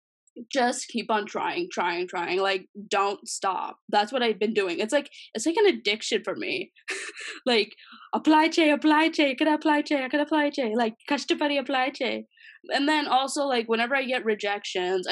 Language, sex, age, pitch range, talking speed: Telugu, female, 10-29, 200-280 Hz, 180 wpm